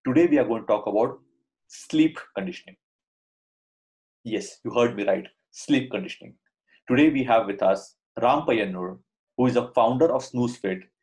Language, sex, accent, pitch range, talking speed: English, male, Indian, 100-140 Hz, 160 wpm